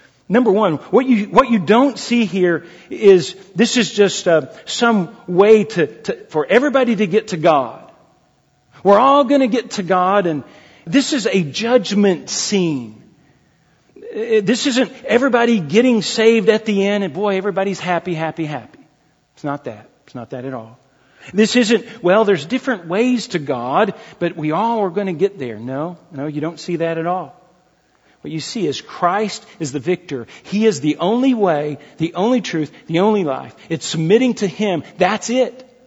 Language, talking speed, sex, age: English, 180 wpm, male, 40-59